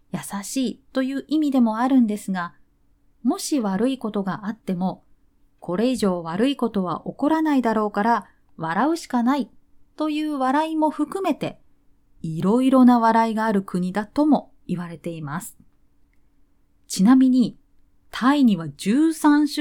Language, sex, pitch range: Japanese, female, 175-260 Hz